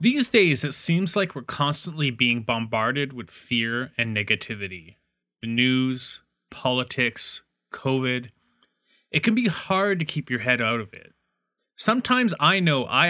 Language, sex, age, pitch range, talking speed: English, male, 30-49, 120-175 Hz, 145 wpm